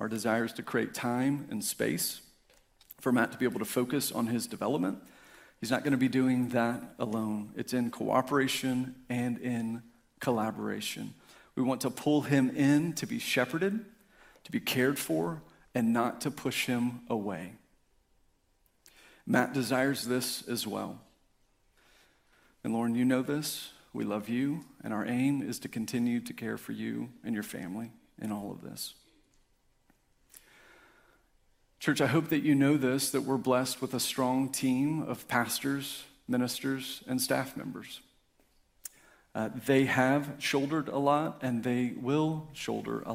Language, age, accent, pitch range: English, 40-59, American, 120-140 Hz